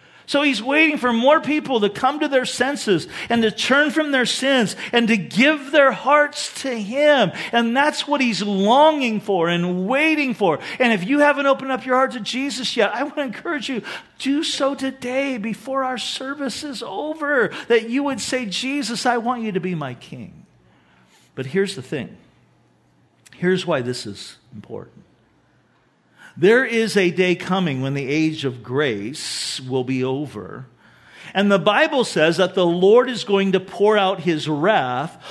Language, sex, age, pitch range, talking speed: English, male, 50-69, 170-260 Hz, 180 wpm